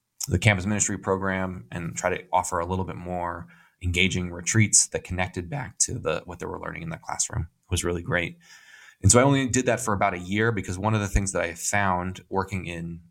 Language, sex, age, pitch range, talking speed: English, male, 20-39, 90-105 Hz, 230 wpm